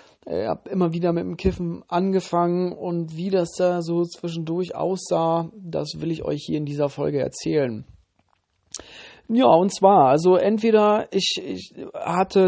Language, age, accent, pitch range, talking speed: German, 40-59, German, 165-195 Hz, 155 wpm